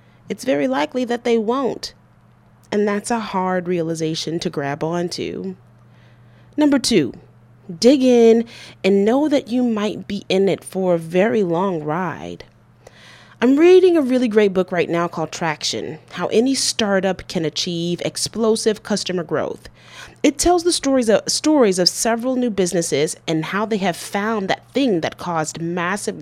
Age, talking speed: 30-49, 155 wpm